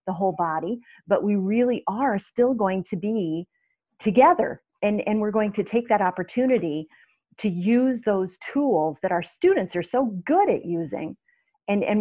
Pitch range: 180-215 Hz